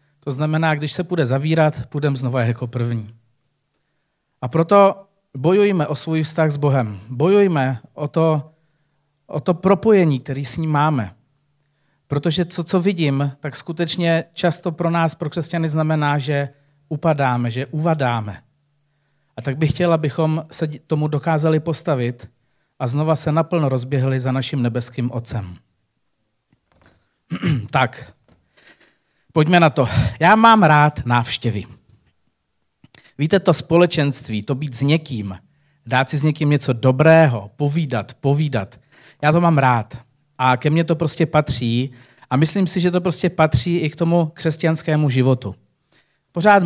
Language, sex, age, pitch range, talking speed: Czech, male, 40-59, 130-160 Hz, 140 wpm